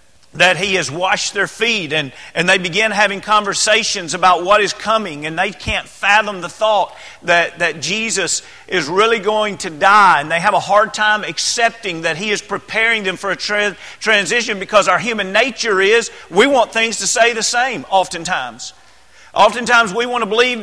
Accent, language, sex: American, English, male